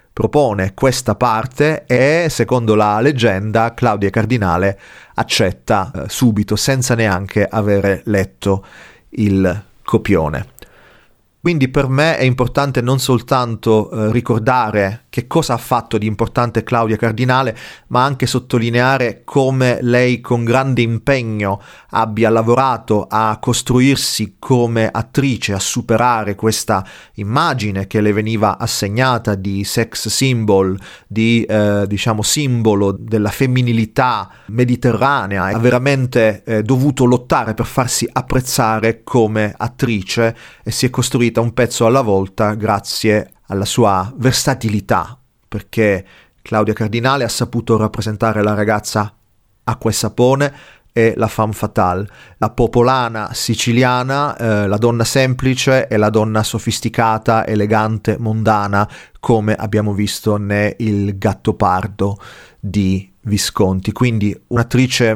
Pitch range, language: 105-125 Hz, Italian